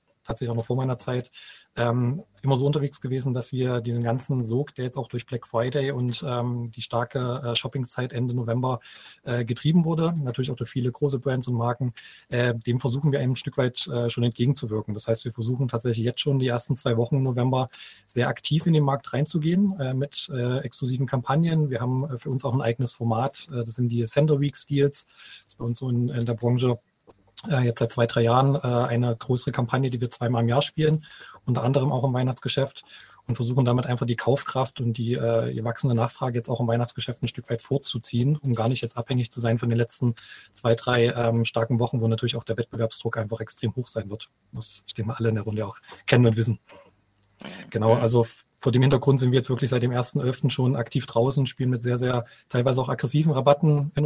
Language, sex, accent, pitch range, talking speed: German, male, German, 115-135 Hz, 220 wpm